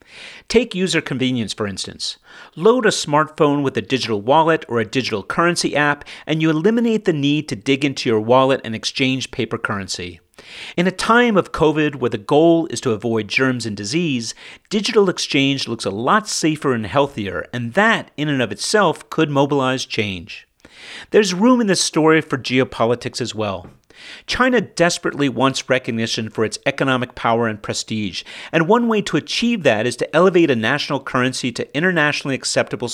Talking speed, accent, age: 175 wpm, American, 40-59